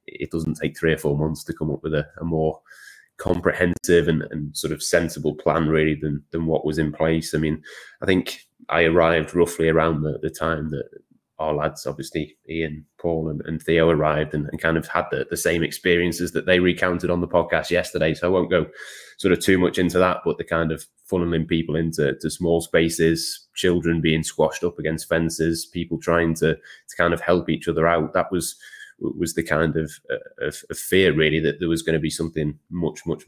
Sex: male